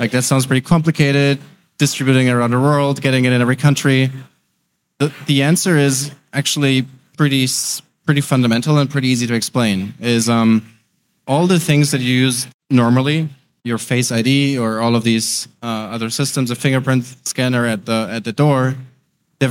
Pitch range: 120-140 Hz